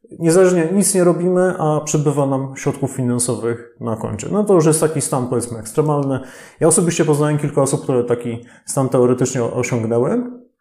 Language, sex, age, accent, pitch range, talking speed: Polish, male, 30-49, native, 120-155 Hz, 165 wpm